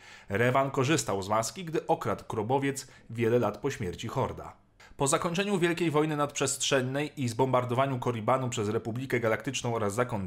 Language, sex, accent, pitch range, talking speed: Polish, male, native, 115-150 Hz, 145 wpm